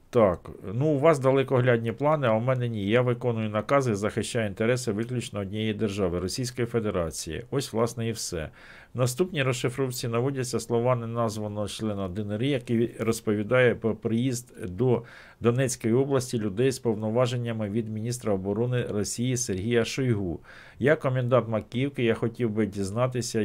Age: 50-69